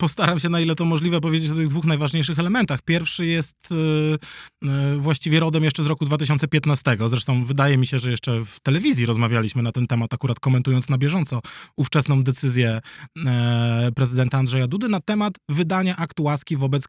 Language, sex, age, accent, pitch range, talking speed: Polish, male, 20-39, native, 135-170 Hz, 165 wpm